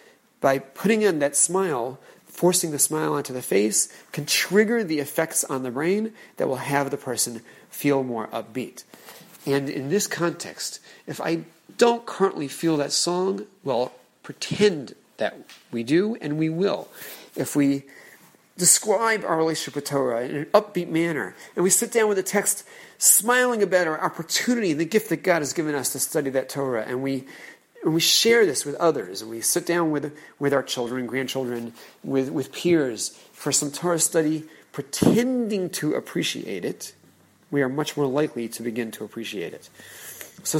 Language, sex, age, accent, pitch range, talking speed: English, male, 40-59, American, 130-180 Hz, 175 wpm